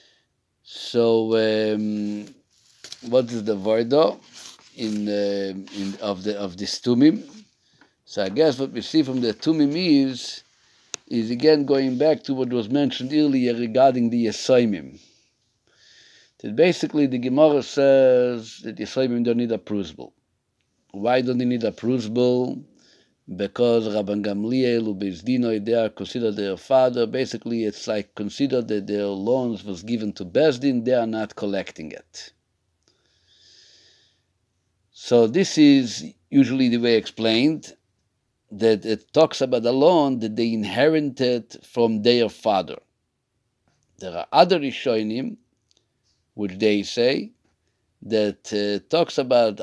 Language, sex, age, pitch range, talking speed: English, male, 50-69, 105-130 Hz, 135 wpm